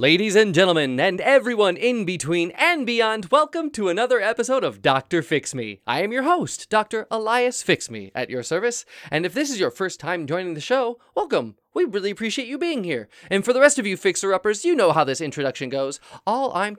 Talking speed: 215 wpm